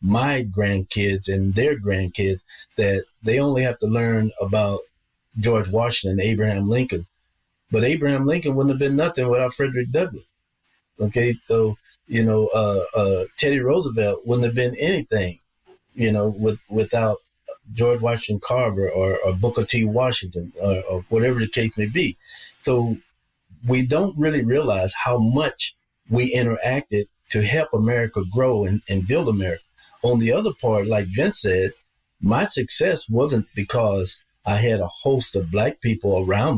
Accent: American